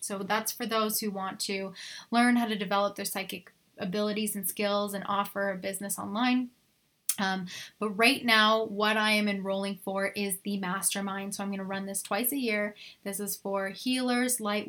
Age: 10-29